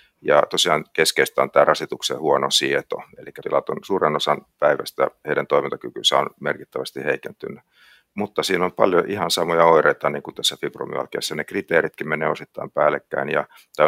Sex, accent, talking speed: male, native, 160 wpm